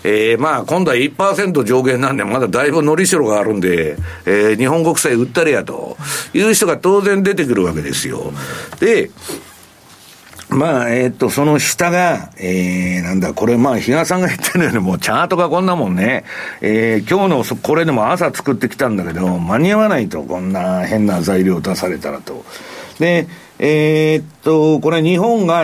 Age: 60-79